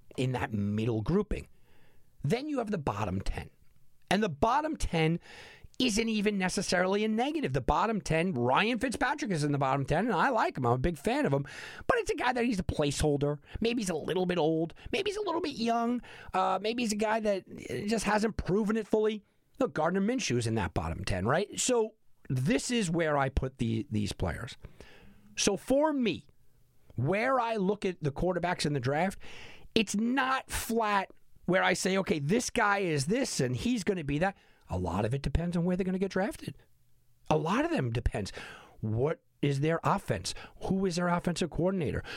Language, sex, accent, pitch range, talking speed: English, male, American, 140-230 Hz, 200 wpm